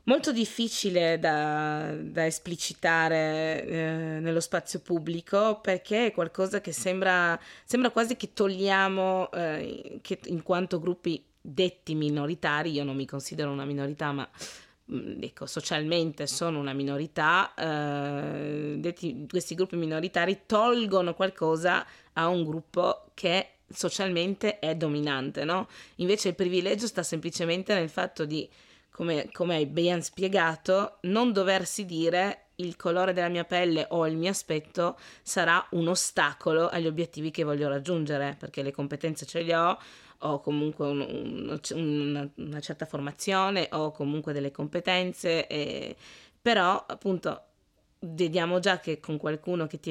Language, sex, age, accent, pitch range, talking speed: Italian, female, 20-39, native, 150-185 Hz, 135 wpm